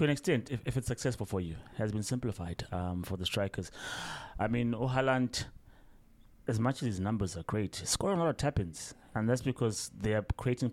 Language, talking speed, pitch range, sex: English, 205 wpm, 100-115 Hz, male